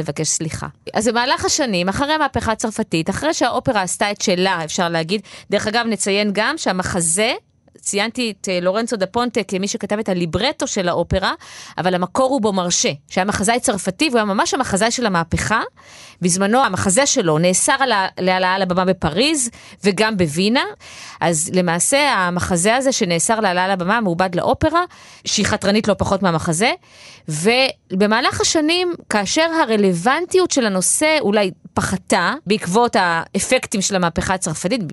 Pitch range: 185-260 Hz